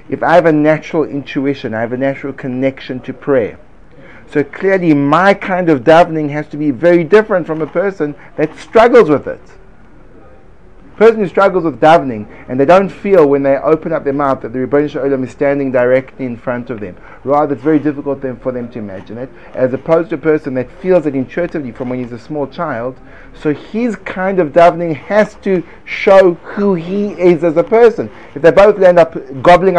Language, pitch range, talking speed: English, 135-175 Hz, 205 wpm